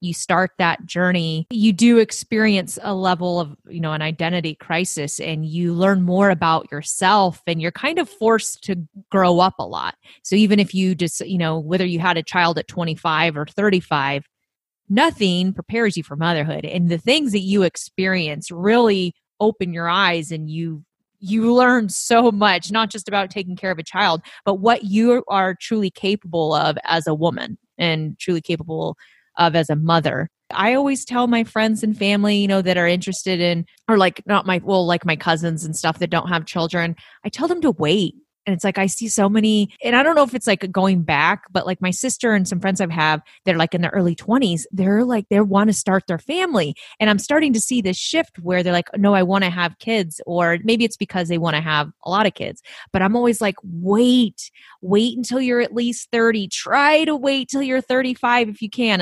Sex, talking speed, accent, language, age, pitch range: female, 220 wpm, American, English, 30-49, 170-215 Hz